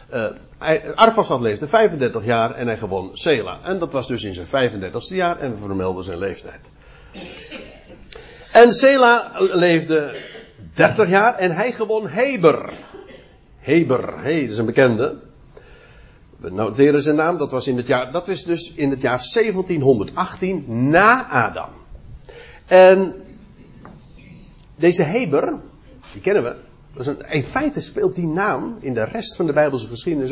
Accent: Dutch